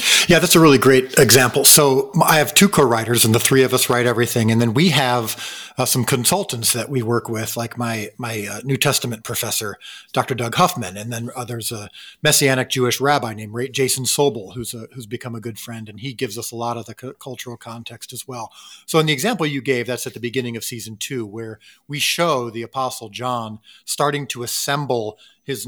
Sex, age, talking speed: male, 40-59, 215 wpm